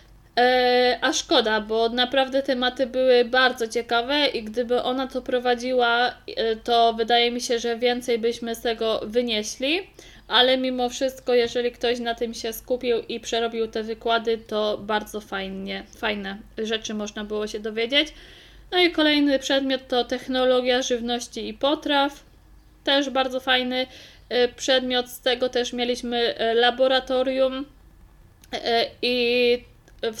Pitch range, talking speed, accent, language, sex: 225-255 Hz, 130 wpm, native, Polish, female